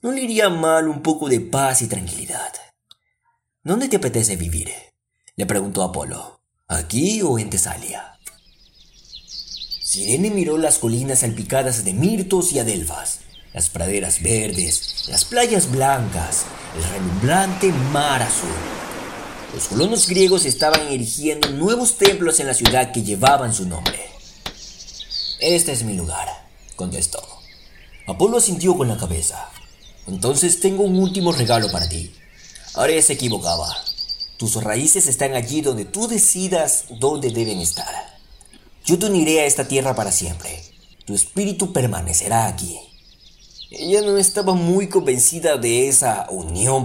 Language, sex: Spanish, male